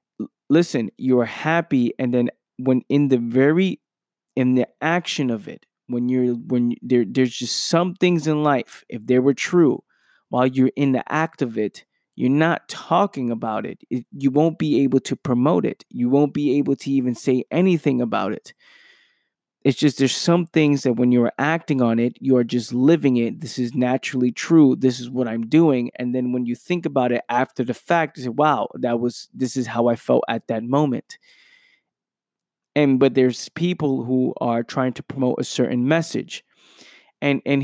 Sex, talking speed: male, 190 wpm